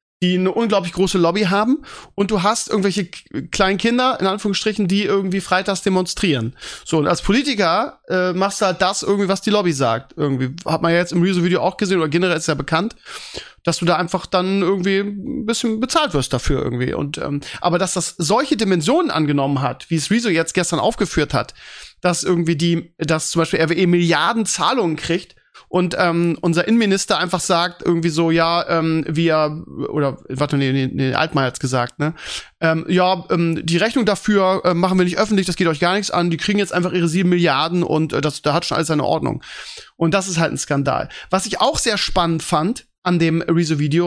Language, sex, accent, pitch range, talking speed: German, male, German, 165-195 Hz, 205 wpm